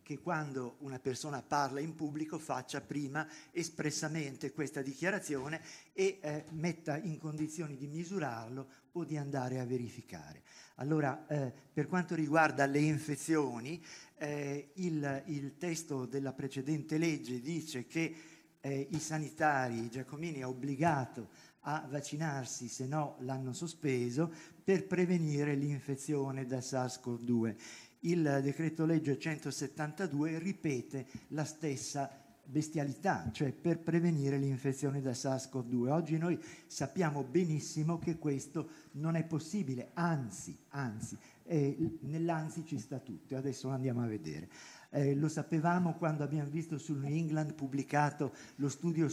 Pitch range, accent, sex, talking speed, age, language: 135-160 Hz, native, male, 125 wpm, 50-69, Italian